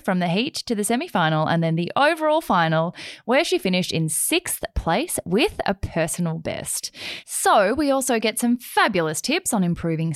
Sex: female